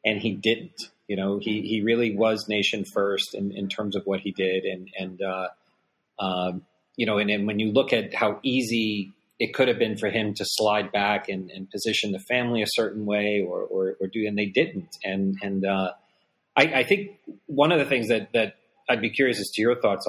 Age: 40-59